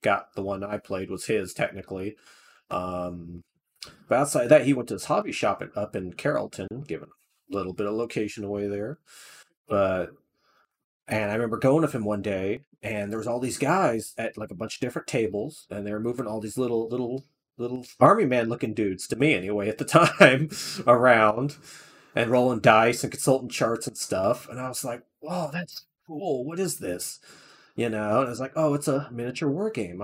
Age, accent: 30-49, American